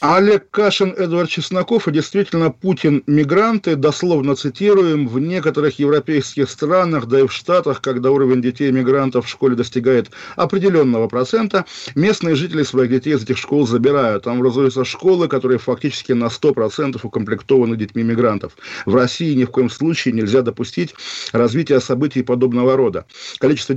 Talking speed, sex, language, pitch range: 140 wpm, male, Russian, 125-165 Hz